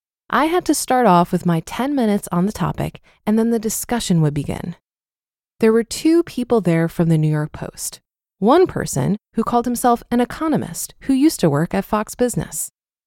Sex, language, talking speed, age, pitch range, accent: female, English, 195 wpm, 20-39, 180-245 Hz, American